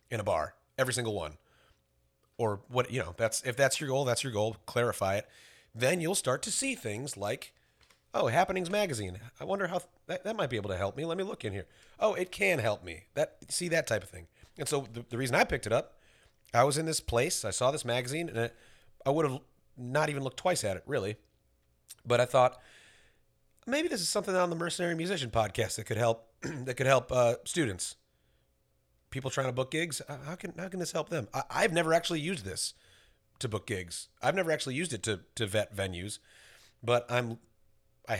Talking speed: 220 wpm